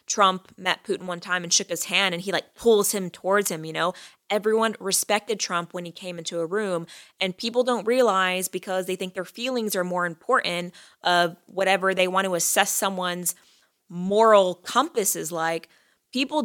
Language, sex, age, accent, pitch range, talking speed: English, female, 20-39, American, 175-220 Hz, 185 wpm